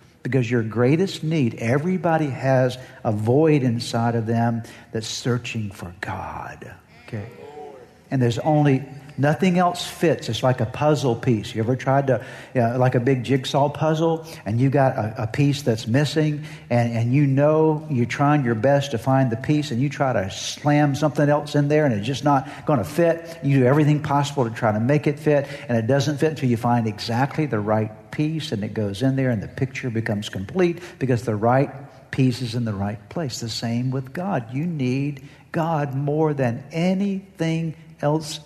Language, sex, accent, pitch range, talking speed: English, male, American, 120-150 Hz, 195 wpm